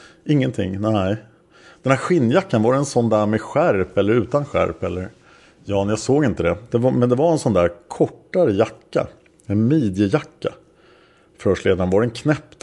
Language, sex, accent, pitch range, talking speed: Swedish, male, Norwegian, 95-125 Hz, 170 wpm